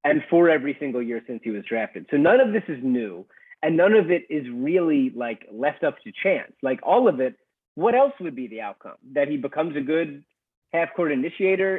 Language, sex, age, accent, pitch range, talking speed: English, male, 30-49, American, 125-180 Hz, 225 wpm